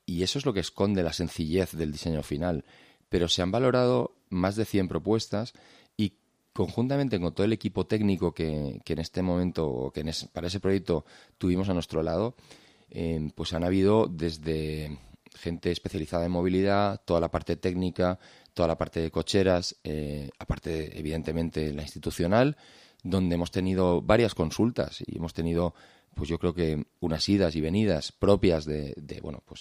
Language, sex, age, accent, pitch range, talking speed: Spanish, male, 30-49, Spanish, 80-105 Hz, 175 wpm